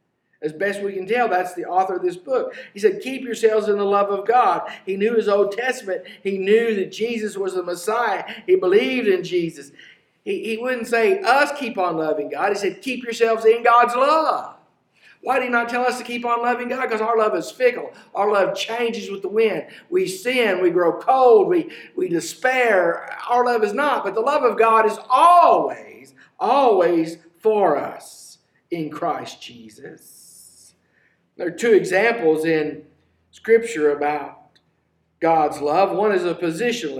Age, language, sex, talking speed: 50-69, English, male, 180 wpm